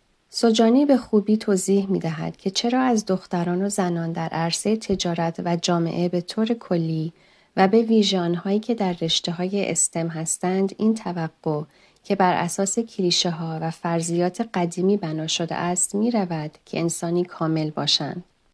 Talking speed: 155 wpm